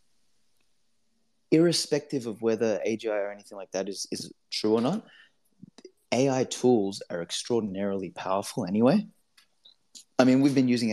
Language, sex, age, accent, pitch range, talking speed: English, male, 20-39, Australian, 100-130 Hz, 130 wpm